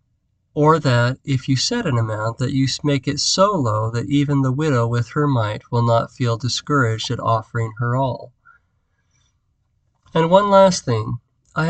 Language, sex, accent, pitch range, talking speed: English, male, American, 115-145 Hz, 170 wpm